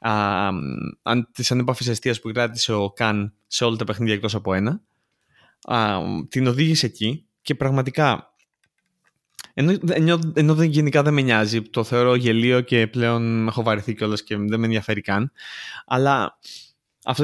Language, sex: Greek, male